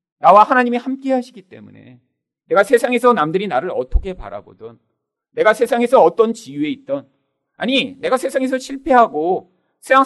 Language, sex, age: Korean, male, 40-59